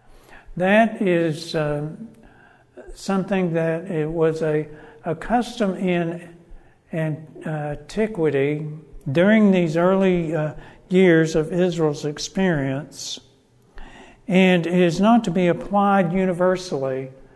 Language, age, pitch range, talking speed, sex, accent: English, 60-79, 150-180 Hz, 90 wpm, male, American